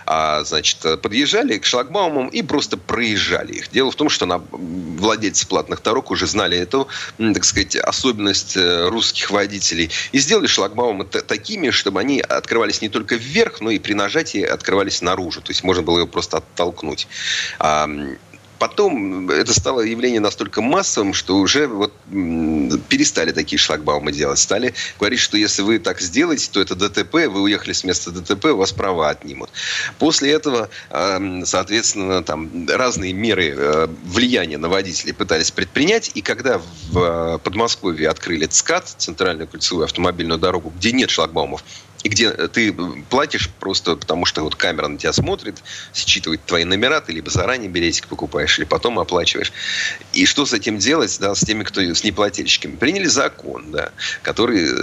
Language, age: Russian, 30-49